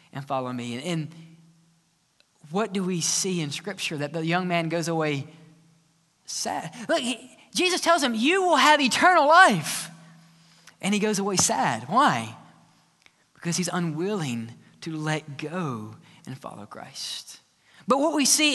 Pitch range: 170-240 Hz